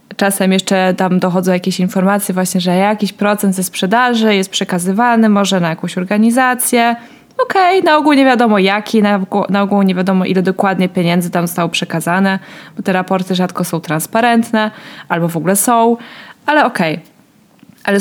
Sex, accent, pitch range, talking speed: female, native, 185-225 Hz, 160 wpm